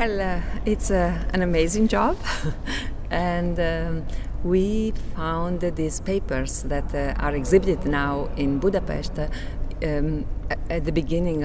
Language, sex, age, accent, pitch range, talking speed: English, female, 50-69, Italian, 140-180 Hz, 130 wpm